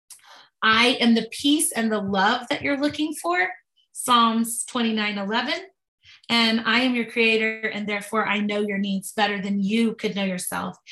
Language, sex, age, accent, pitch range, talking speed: English, female, 20-39, American, 205-235 Hz, 170 wpm